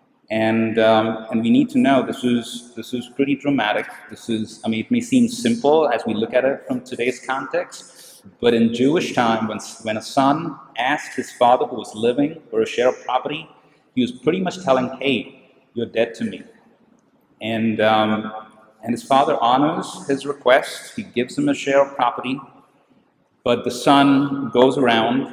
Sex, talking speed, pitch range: male, 185 wpm, 115-145 Hz